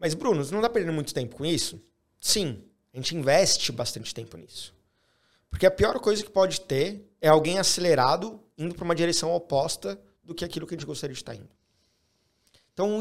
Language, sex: Portuguese, male